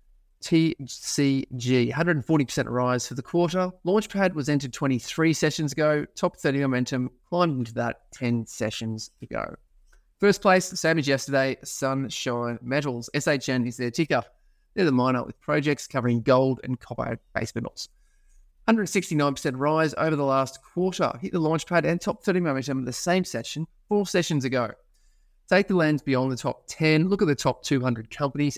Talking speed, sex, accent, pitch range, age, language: 155 wpm, male, Australian, 125-160 Hz, 20-39, English